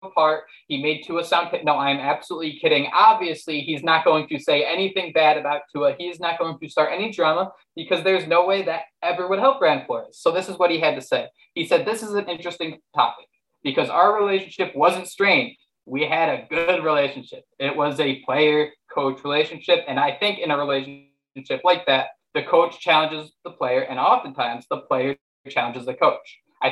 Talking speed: 205 wpm